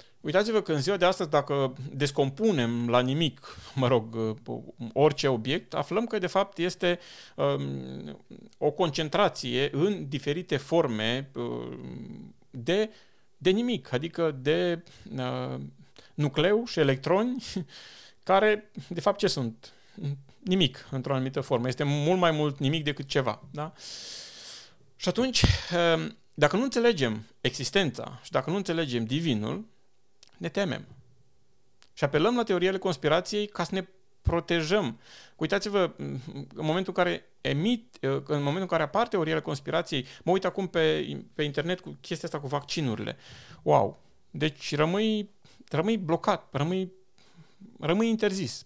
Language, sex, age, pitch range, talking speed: Romanian, male, 40-59, 135-190 Hz, 125 wpm